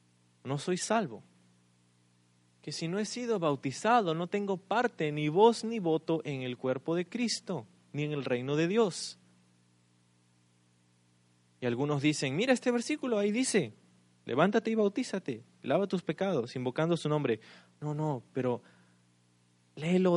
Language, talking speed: Spanish, 145 wpm